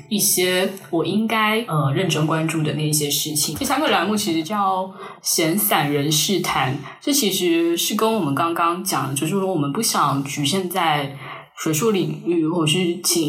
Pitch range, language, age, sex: 155-190 Hz, Chinese, 10-29, female